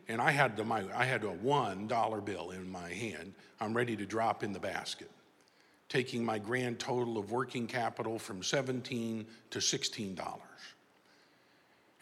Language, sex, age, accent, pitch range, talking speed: English, male, 50-69, American, 115-150 Hz, 155 wpm